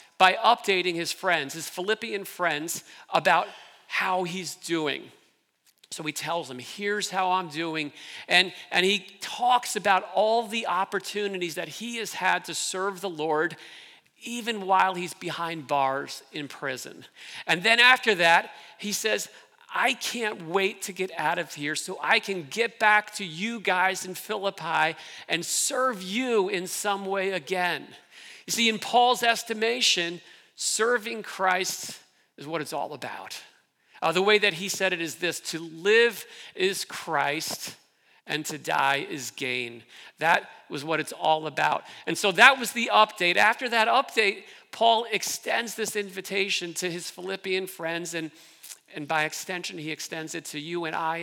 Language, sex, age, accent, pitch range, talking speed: English, male, 40-59, American, 165-215 Hz, 160 wpm